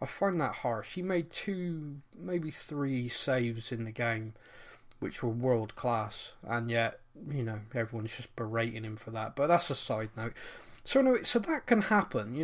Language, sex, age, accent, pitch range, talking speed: English, male, 30-49, British, 125-195 Hz, 195 wpm